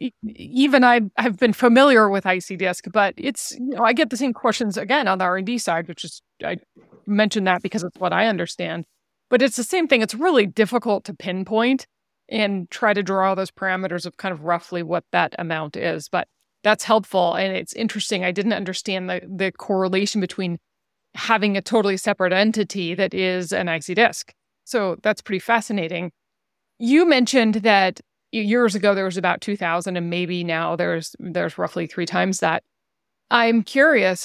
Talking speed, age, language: 180 wpm, 30-49, English